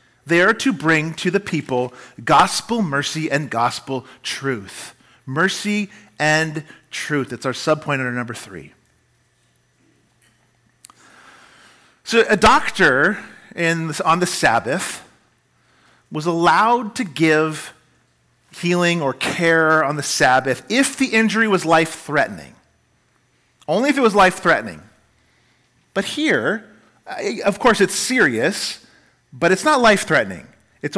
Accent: American